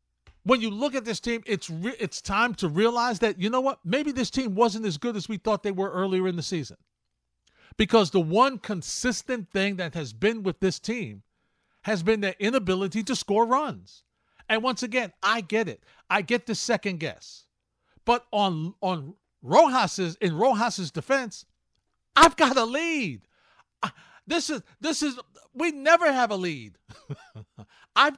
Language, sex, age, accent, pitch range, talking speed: English, male, 50-69, American, 195-265 Hz, 175 wpm